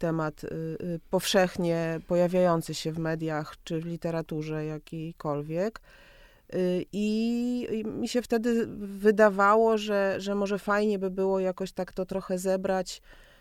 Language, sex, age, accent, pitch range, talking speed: Polish, female, 30-49, native, 170-205 Hz, 120 wpm